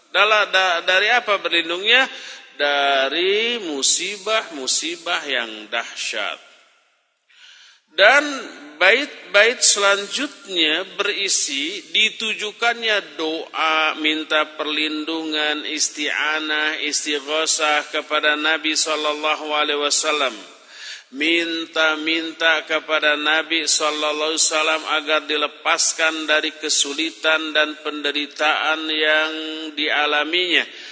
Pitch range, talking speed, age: 150-215 Hz, 70 wpm, 50-69